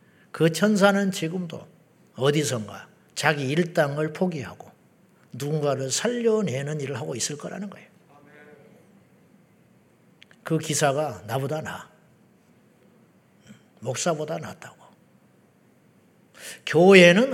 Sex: male